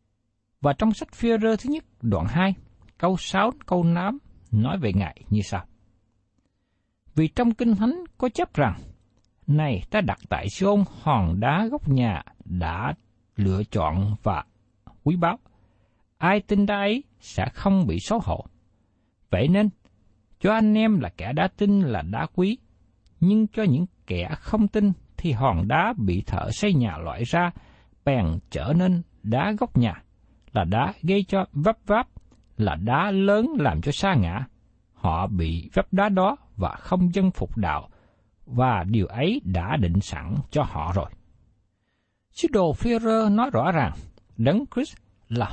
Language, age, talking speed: Vietnamese, 60-79, 160 wpm